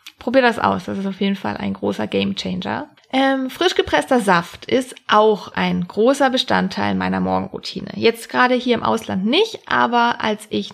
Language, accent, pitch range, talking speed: German, German, 190-255 Hz, 180 wpm